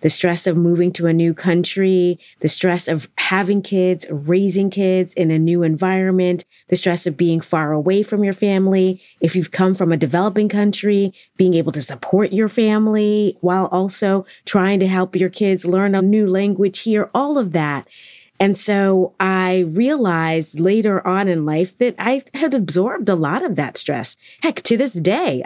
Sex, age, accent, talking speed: female, 30-49, American, 180 wpm